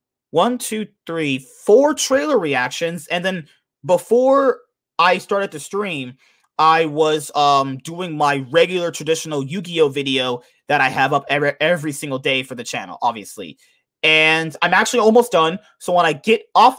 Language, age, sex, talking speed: English, 30-49, male, 155 wpm